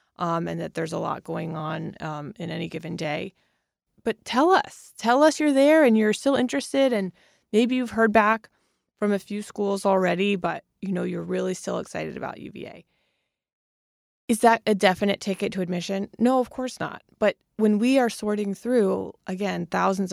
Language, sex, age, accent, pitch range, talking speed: English, female, 20-39, American, 175-225 Hz, 185 wpm